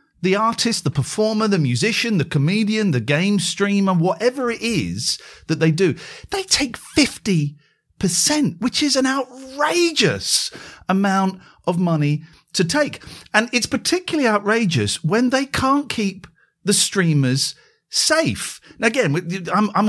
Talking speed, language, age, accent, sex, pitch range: 135 wpm, English, 40-59, British, male, 155-225 Hz